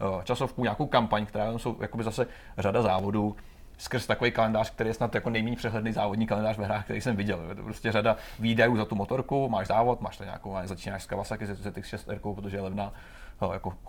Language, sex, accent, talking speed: Czech, male, native, 200 wpm